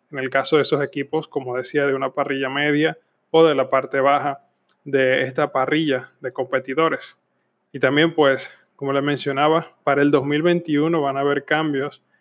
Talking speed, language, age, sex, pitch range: 170 wpm, Spanish, 20-39, male, 140-155 Hz